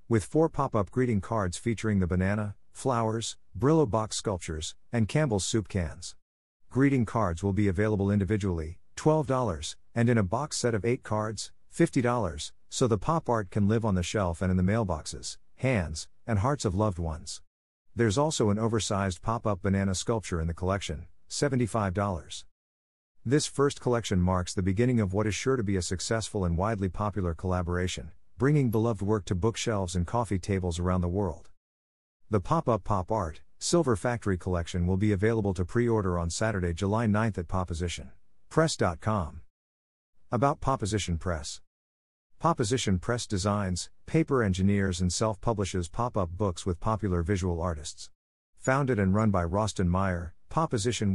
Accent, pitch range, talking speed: American, 90-115 Hz, 155 wpm